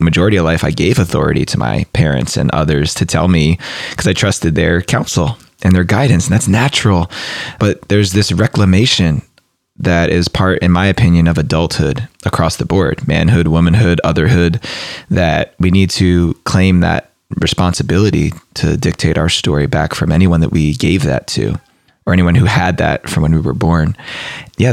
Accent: American